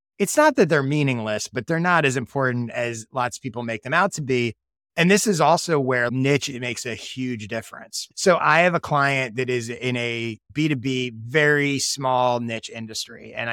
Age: 30-49